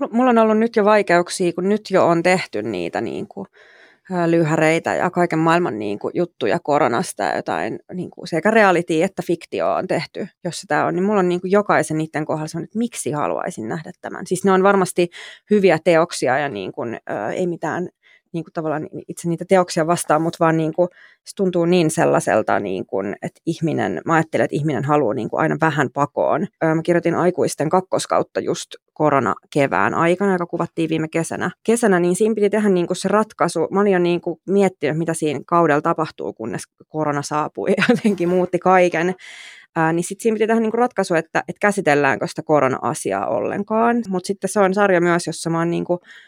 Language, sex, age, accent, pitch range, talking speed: Finnish, female, 20-39, native, 160-190 Hz, 180 wpm